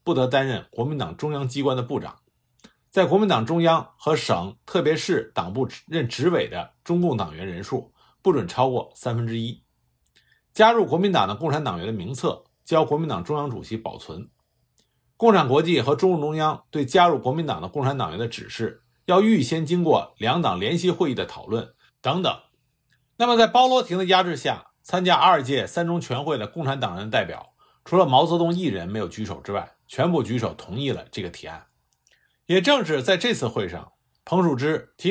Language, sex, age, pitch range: Chinese, male, 50-69, 120-180 Hz